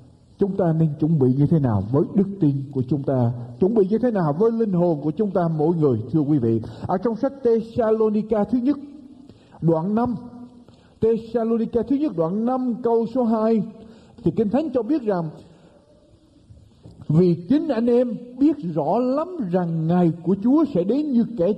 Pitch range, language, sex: 150-235 Hz, Vietnamese, male